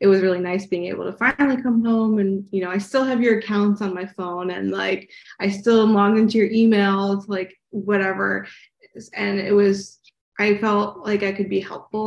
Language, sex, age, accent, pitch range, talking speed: English, female, 20-39, American, 190-215 Hz, 205 wpm